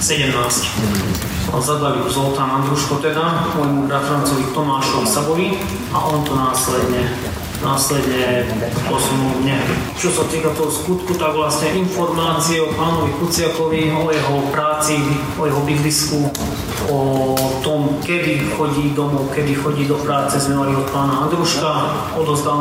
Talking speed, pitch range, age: 125 wpm, 140-155 Hz, 30-49